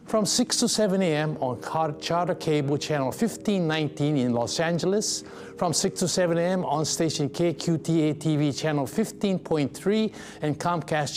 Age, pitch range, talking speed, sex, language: 50-69, 140-180 Hz, 135 wpm, male, English